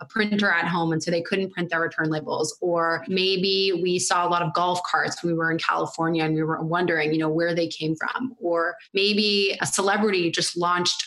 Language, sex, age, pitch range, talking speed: English, female, 20-39, 165-195 Hz, 230 wpm